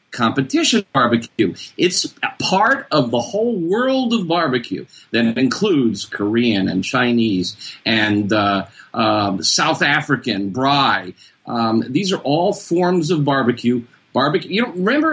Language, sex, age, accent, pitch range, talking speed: English, male, 50-69, American, 115-190 Hz, 130 wpm